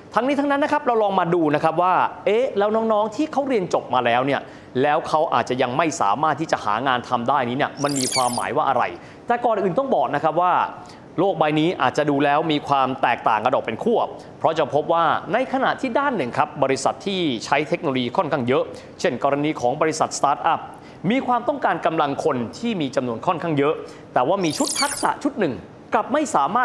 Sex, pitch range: male, 140-215 Hz